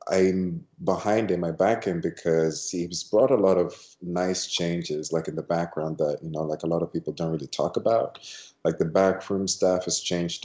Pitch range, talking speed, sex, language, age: 85-110 Hz, 205 wpm, male, English, 20-39